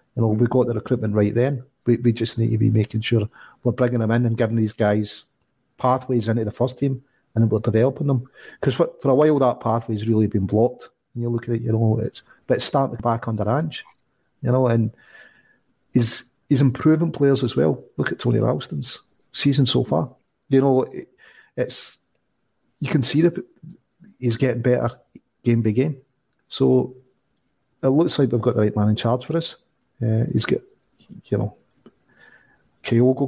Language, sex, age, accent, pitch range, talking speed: English, male, 40-59, British, 115-135 Hz, 195 wpm